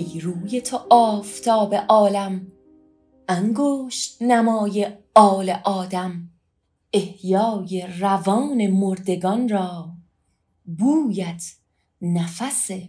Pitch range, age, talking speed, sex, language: 165-215 Hz, 30-49, 70 wpm, female, Persian